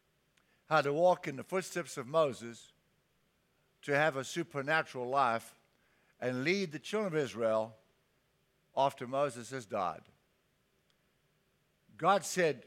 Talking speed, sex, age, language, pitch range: 120 wpm, male, 60-79, English, 130-180 Hz